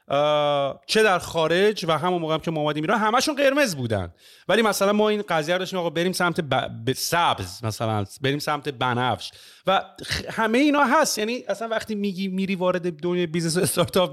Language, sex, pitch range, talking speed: Persian, male, 135-195 Hz, 185 wpm